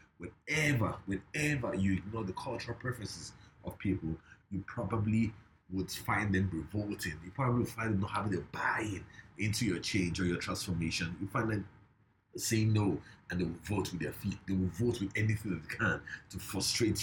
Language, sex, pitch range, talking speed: English, male, 95-115 Hz, 185 wpm